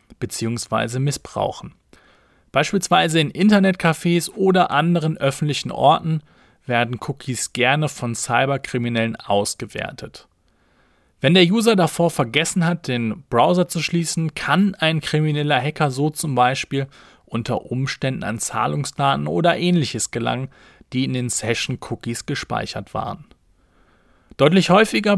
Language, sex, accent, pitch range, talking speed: German, male, German, 130-170 Hz, 110 wpm